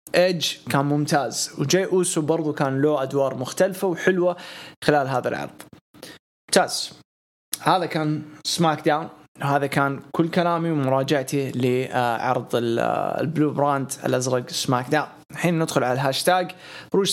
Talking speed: 120 wpm